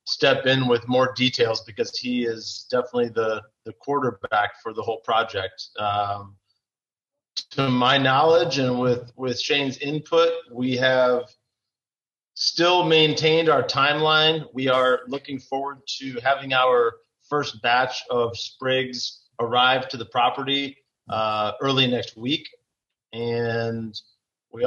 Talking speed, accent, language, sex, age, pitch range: 125 wpm, American, English, male, 30-49, 115-135 Hz